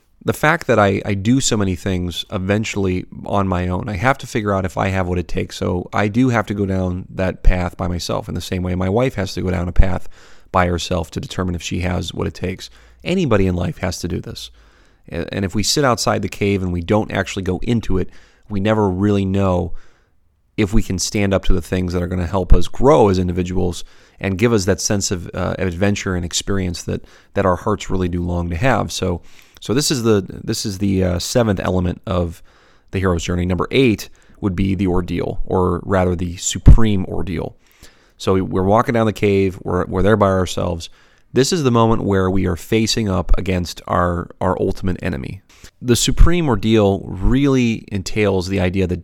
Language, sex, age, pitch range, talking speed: English, male, 30-49, 90-105 Hz, 215 wpm